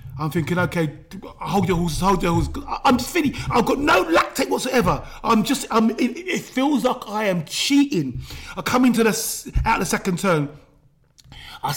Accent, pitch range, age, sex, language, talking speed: British, 150-245 Hz, 30-49, male, English, 185 wpm